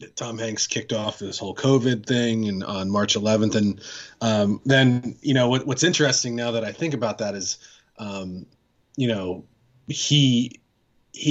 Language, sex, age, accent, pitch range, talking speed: English, male, 30-49, American, 105-135 Hz, 170 wpm